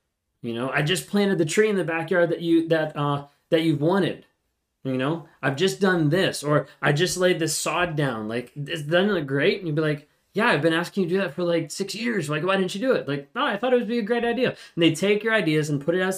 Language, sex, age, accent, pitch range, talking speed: English, male, 20-39, American, 135-170 Hz, 280 wpm